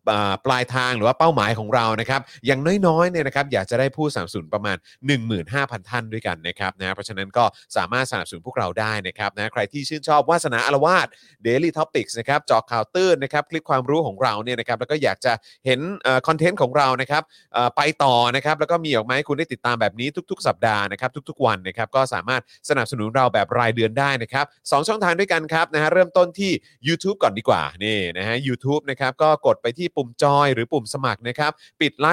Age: 30-49